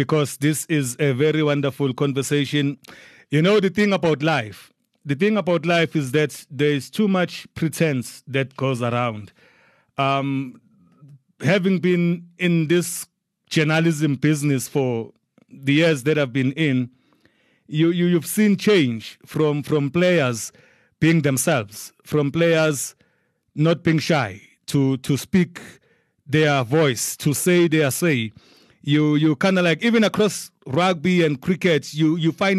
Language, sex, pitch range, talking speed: English, male, 135-170 Hz, 140 wpm